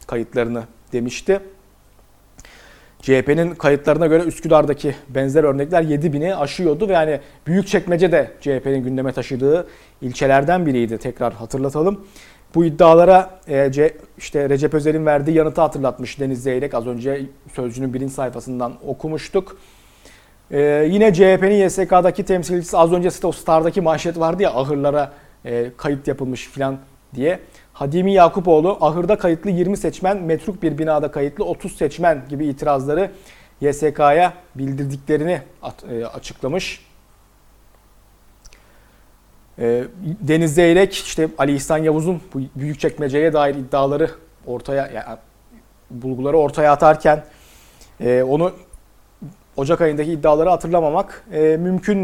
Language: Turkish